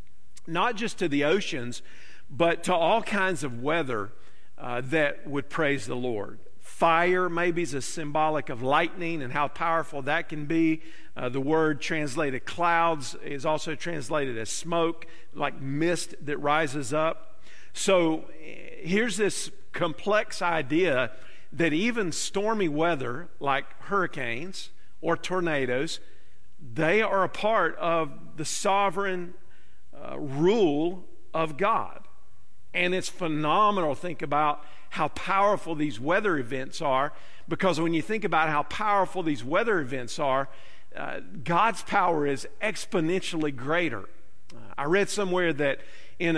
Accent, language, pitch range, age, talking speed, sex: American, English, 145-180 Hz, 50-69, 135 wpm, male